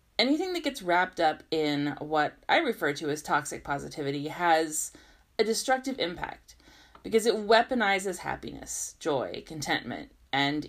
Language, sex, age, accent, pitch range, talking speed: English, female, 30-49, American, 145-200 Hz, 135 wpm